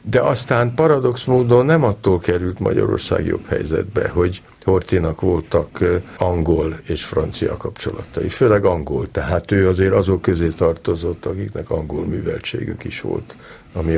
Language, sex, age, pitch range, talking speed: Hungarian, male, 50-69, 90-120 Hz, 135 wpm